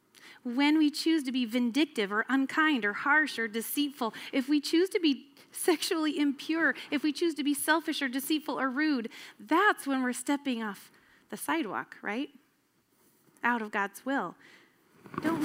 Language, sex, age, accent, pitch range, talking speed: English, female, 30-49, American, 225-295 Hz, 165 wpm